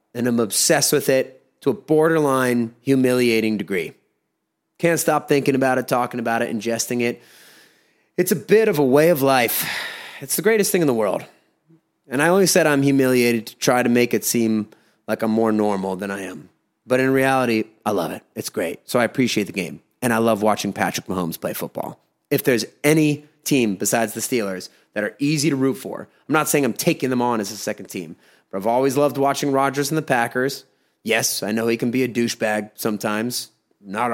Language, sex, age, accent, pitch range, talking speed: English, male, 30-49, American, 115-160 Hz, 205 wpm